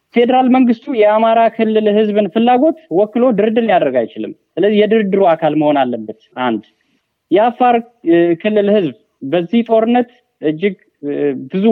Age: 30-49